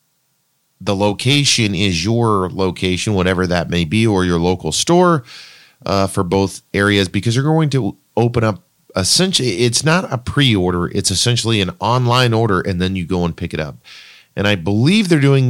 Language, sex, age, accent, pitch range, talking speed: English, male, 40-59, American, 95-120 Hz, 180 wpm